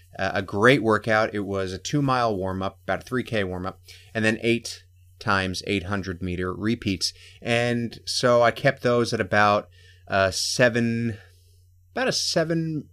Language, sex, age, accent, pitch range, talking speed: English, male, 30-49, American, 90-125 Hz, 140 wpm